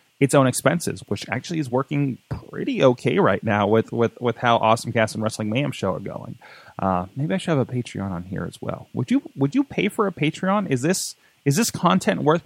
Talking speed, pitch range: 230 wpm, 115-165 Hz